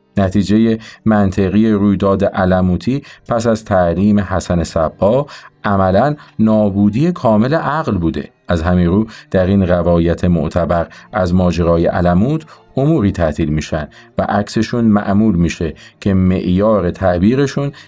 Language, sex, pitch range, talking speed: Arabic, male, 85-110 Hz, 115 wpm